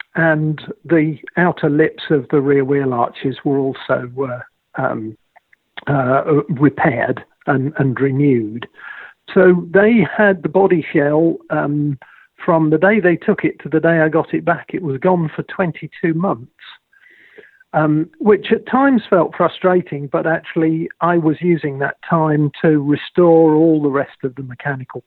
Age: 50-69